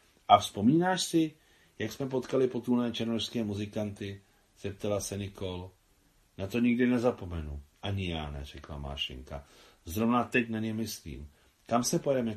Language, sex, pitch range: Czech, male, 85-120 Hz